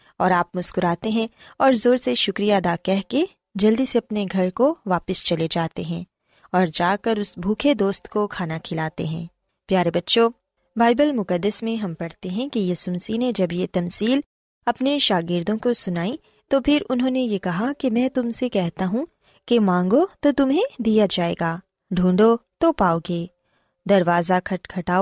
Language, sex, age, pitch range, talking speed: Urdu, female, 20-39, 180-255 Hz, 175 wpm